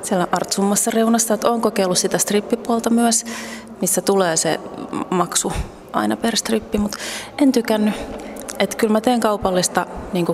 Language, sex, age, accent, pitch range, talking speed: Finnish, female, 30-49, native, 180-215 Hz, 145 wpm